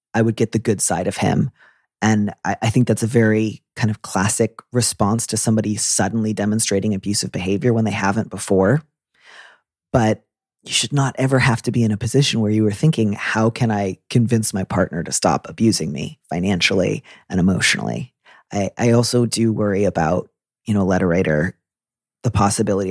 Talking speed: 180 wpm